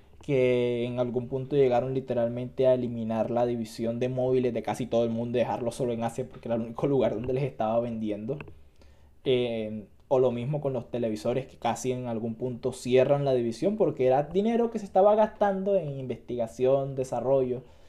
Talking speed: 185 wpm